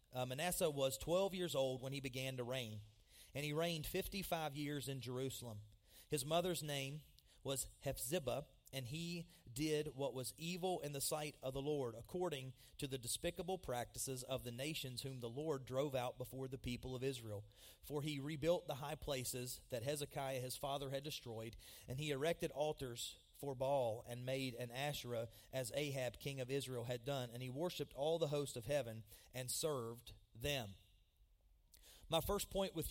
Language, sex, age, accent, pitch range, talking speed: English, male, 30-49, American, 120-150 Hz, 175 wpm